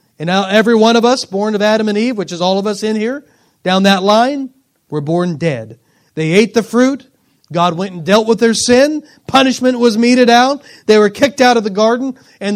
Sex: male